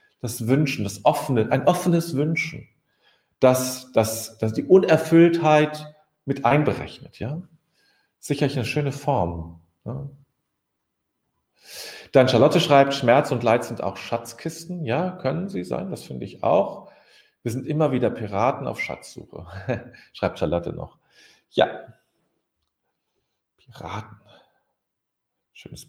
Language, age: German, 40-59